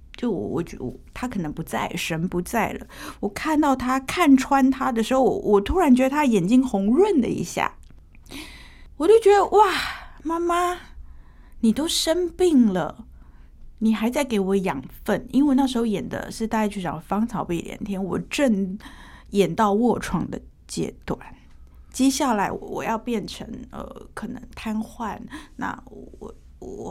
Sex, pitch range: female, 195-270 Hz